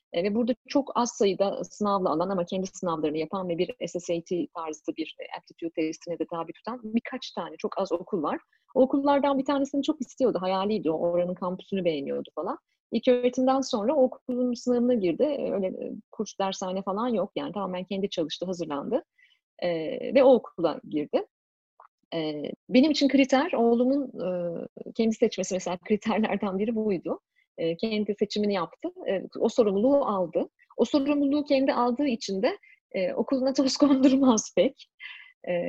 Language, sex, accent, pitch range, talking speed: Turkish, female, native, 190-265 Hz, 150 wpm